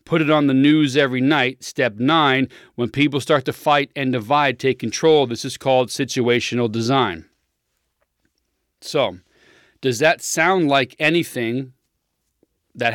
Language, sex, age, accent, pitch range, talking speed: English, male, 40-59, American, 130-160 Hz, 140 wpm